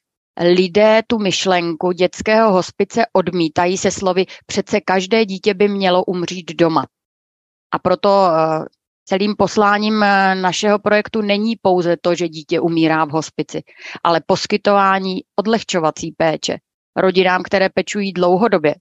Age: 30-49